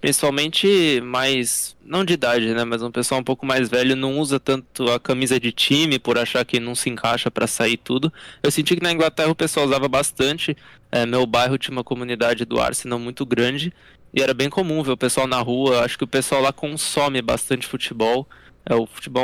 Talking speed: 205 wpm